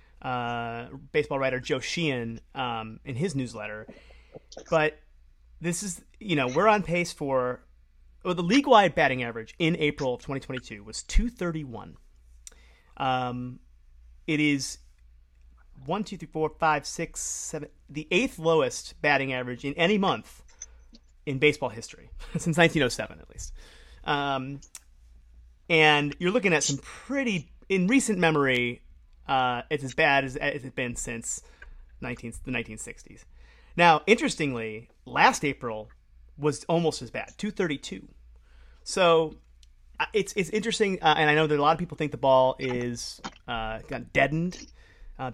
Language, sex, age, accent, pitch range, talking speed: English, male, 30-49, American, 110-155 Hz, 140 wpm